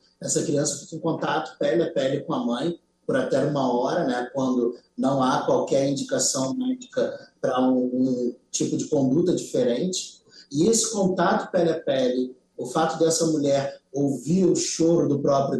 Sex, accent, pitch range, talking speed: male, Brazilian, 140-170 Hz, 170 wpm